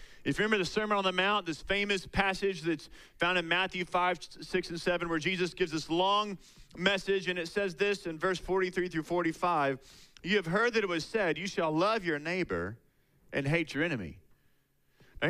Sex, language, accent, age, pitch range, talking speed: male, English, American, 30-49, 140-195 Hz, 200 wpm